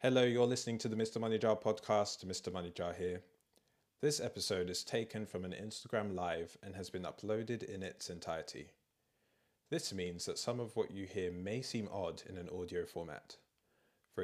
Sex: male